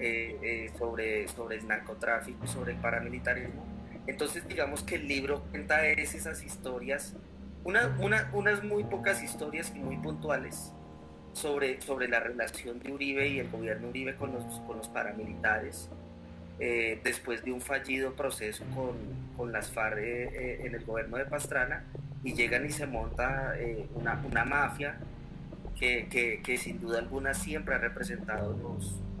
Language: Spanish